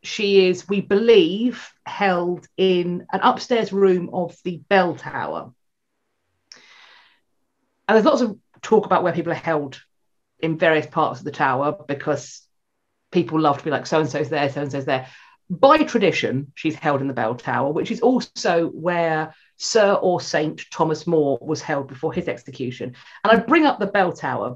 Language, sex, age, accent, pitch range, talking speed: English, female, 40-59, British, 150-195 Hz, 165 wpm